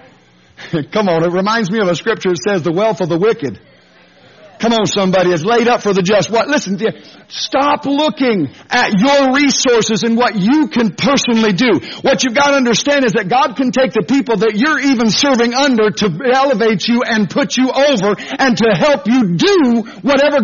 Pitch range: 175-240 Hz